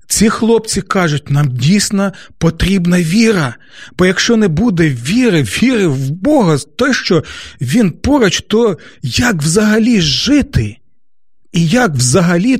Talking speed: 125 wpm